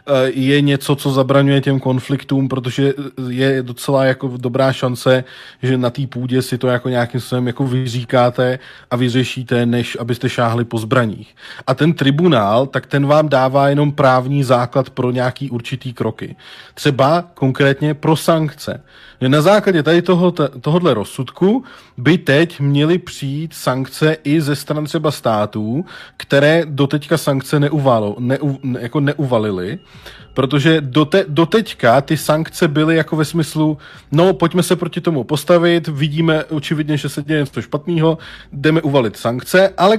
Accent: native